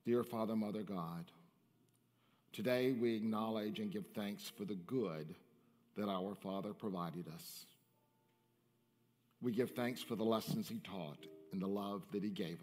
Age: 50-69